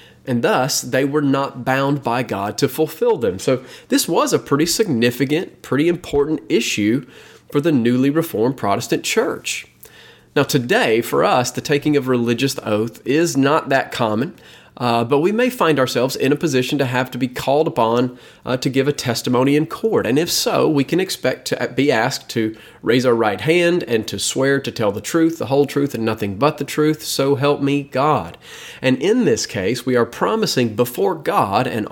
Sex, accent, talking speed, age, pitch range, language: male, American, 195 wpm, 30-49, 125-155 Hz, English